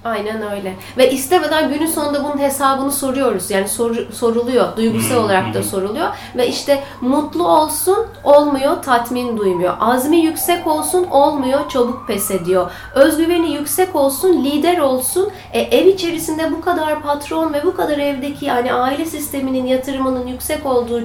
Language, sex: Turkish, female